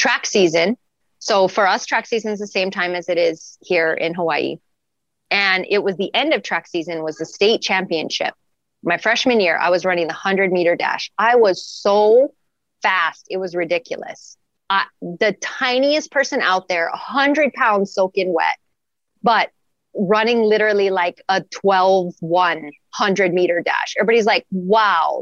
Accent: American